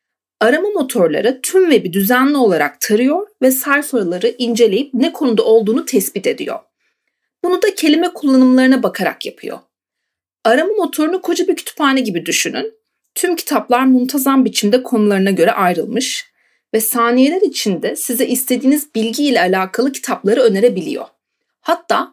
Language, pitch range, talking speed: Turkish, 220-305 Hz, 125 wpm